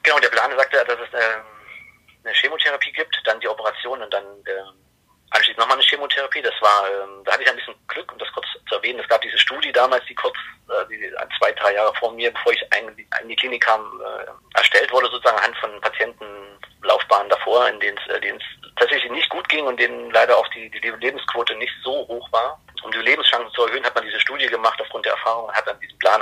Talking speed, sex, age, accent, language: 215 wpm, male, 40-59, German, German